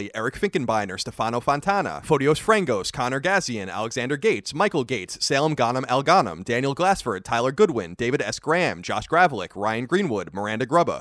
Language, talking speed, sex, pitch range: English, 155 wpm, male, 120-180 Hz